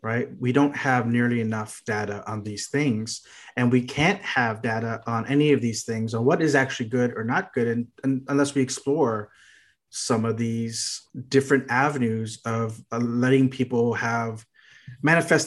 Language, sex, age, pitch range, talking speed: English, male, 30-49, 120-140 Hz, 165 wpm